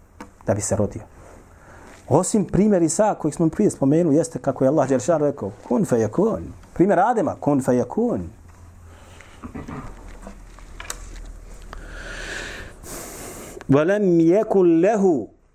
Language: English